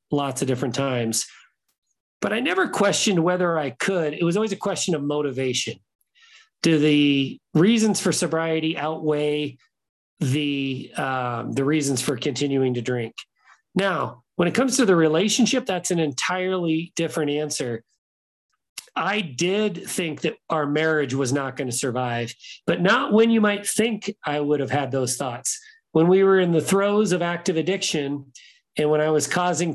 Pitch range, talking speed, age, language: 140-190 Hz, 160 wpm, 40-59, English